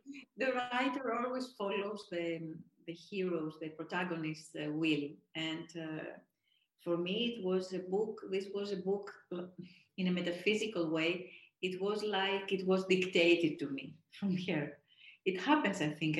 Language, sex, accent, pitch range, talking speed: Turkish, female, Spanish, 160-195 Hz, 150 wpm